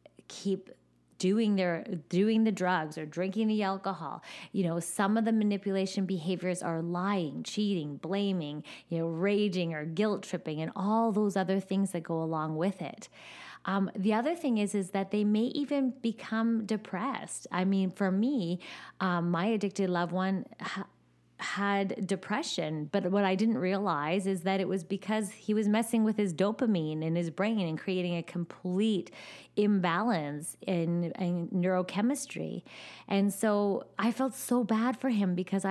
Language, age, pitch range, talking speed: English, 20-39, 175-205 Hz, 160 wpm